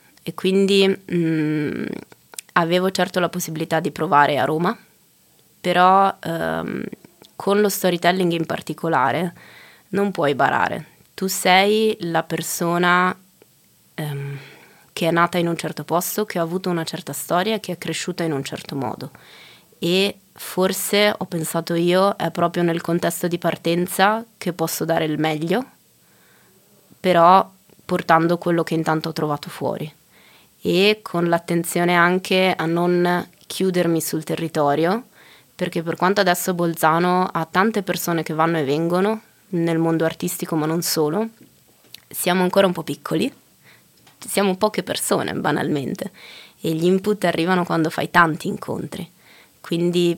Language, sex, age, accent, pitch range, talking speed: Italian, female, 20-39, native, 165-185 Hz, 135 wpm